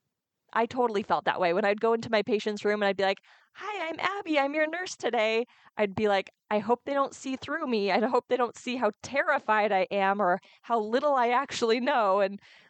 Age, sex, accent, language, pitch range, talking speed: 20-39, female, American, English, 205-260 Hz, 230 wpm